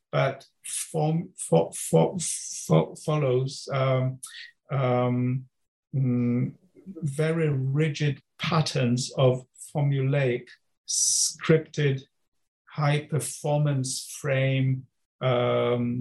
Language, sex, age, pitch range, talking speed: English, male, 50-69, 125-150 Hz, 65 wpm